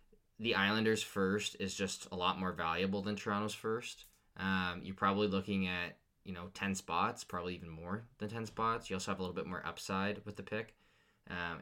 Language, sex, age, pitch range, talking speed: English, male, 20-39, 90-105 Hz, 200 wpm